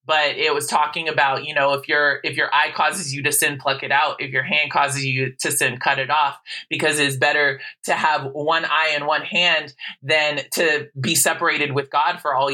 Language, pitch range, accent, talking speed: English, 150-200 Hz, American, 225 wpm